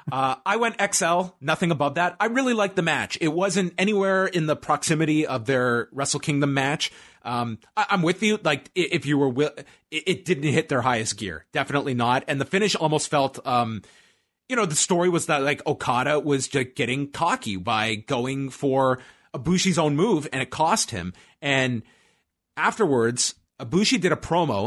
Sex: male